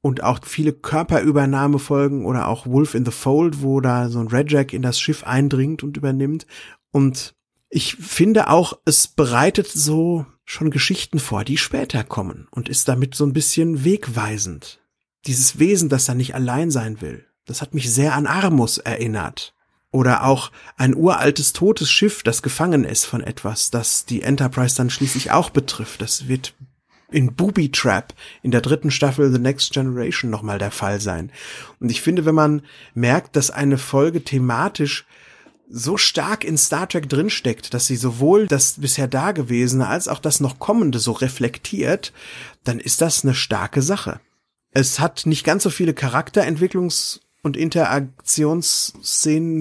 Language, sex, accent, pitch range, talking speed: German, male, German, 125-155 Hz, 165 wpm